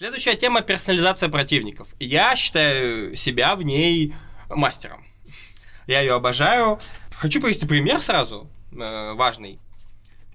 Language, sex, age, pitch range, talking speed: Russian, male, 20-39, 110-145 Hz, 120 wpm